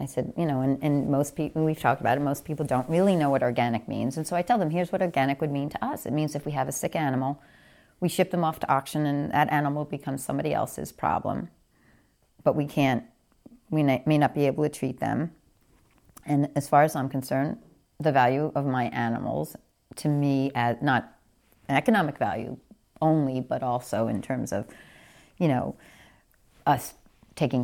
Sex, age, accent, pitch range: female, 40-59, American, 130-155 Hz